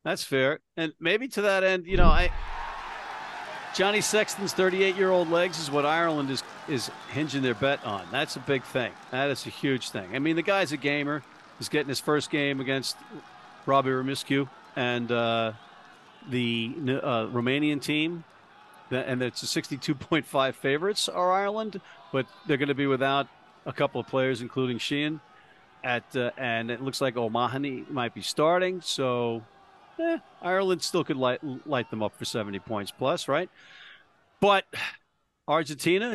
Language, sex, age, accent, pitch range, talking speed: English, male, 50-69, American, 130-180 Hz, 160 wpm